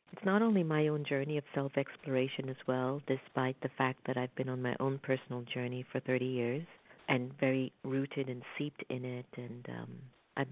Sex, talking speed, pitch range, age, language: female, 195 wpm, 125-145 Hz, 50-69, English